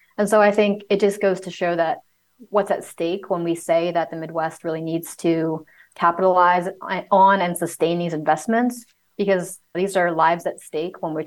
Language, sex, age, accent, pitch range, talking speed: English, female, 30-49, American, 165-195 Hz, 190 wpm